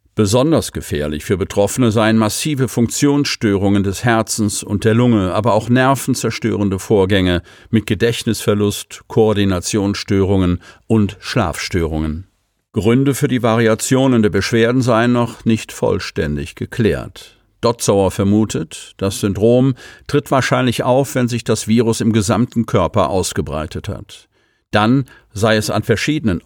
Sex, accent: male, German